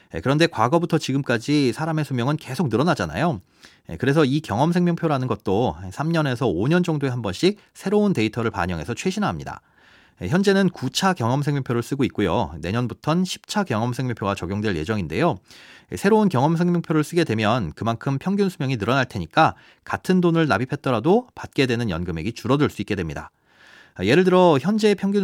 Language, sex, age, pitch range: Korean, male, 40-59, 115-170 Hz